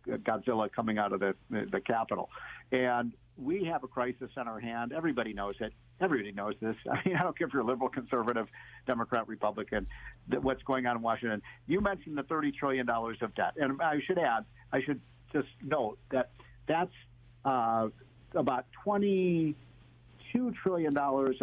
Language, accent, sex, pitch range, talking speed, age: English, American, male, 115-140 Hz, 175 wpm, 50-69